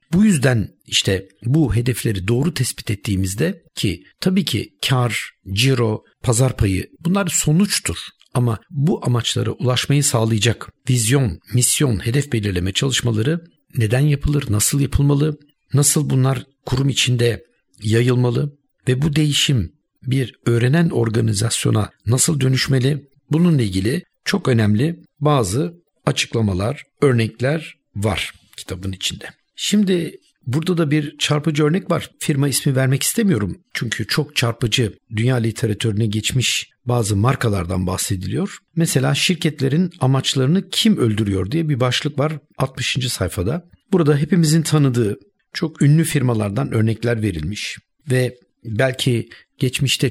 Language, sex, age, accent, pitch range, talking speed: Turkish, male, 60-79, native, 115-150 Hz, 115 wpm